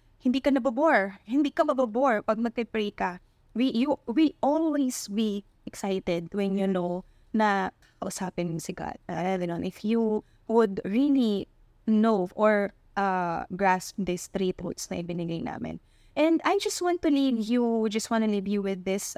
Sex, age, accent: female, 20-39, native